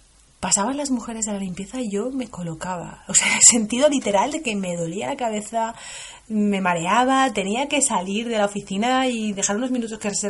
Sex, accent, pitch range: female, Spanish, 185-235 Hz